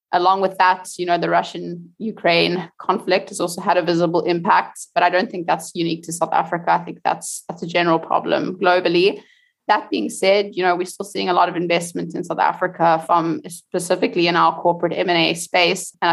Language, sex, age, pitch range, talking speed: English, female, 20-39, 170-185 Hz, 205 wpm